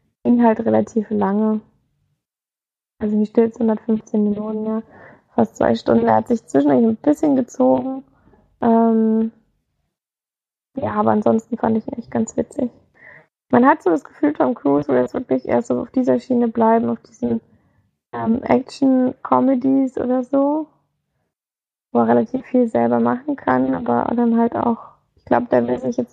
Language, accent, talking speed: German, German, 155 wpm